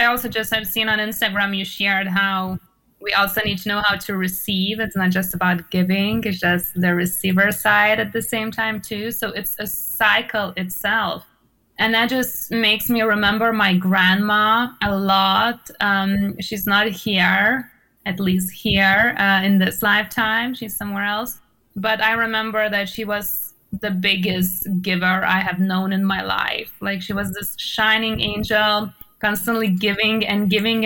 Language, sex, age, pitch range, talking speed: English, female, 20-39, 190-220 Hz, 170 wpm